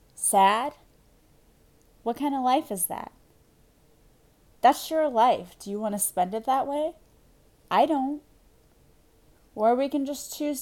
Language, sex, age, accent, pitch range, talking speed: English, female, 20-39, American, 200-260 Hz, 140 wpm